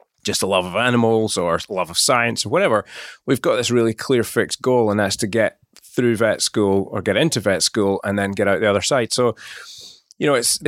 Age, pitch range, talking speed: 30-49, 105-135 Hz, 230 wpm